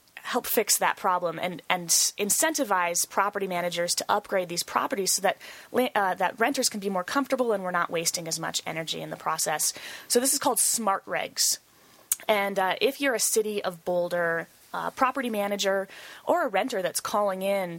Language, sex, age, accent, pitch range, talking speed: English, female, 20-39, American, 180-230 Hz, 180 wpm